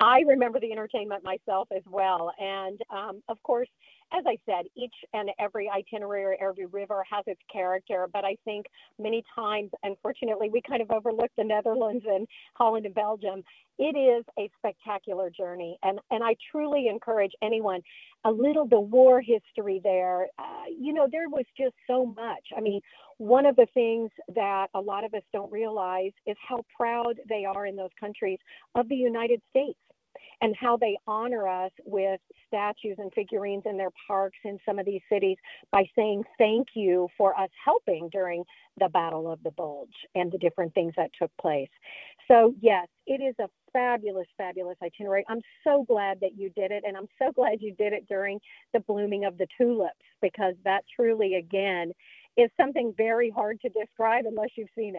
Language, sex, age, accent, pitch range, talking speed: English, female, 50-69, American, 195-235 Hz, 180 wpm